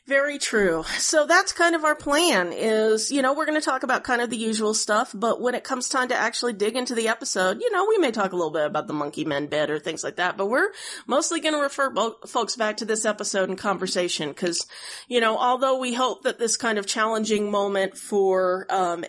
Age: 30-49